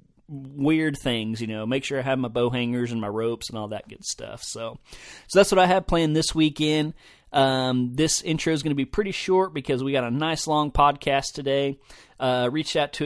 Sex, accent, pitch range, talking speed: male, American, 120-145 Hz, 220 wpm